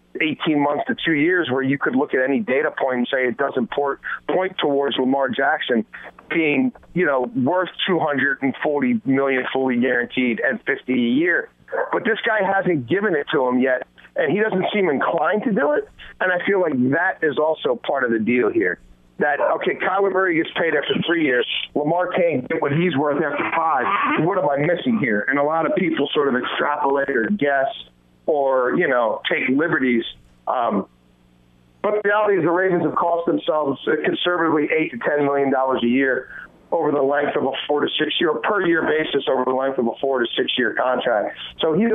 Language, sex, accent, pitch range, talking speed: English, male, American, 125-175 Hz, 195 wpm